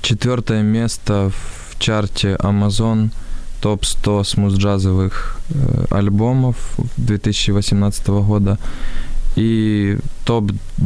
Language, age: Ukrainian, 20-39